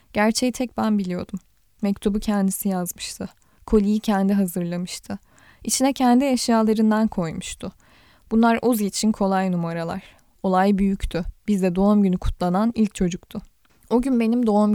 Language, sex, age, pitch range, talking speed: Turkish, female, 10-29, 195-230 Hz, 125 wpm